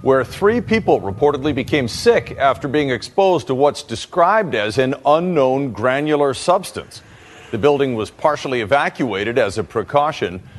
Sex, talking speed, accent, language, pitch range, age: male, 140 wpm, American, English, 115-155 Hz, 50-69